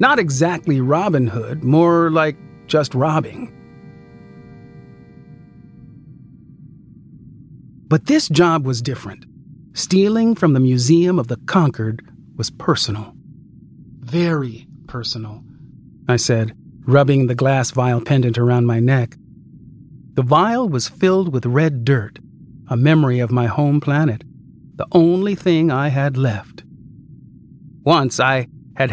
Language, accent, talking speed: English, American, 115 wpm